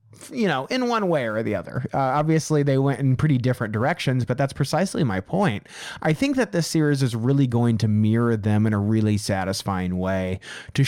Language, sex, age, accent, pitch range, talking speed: English, male, 30-49, American, 110-140 Hz, 210 wpm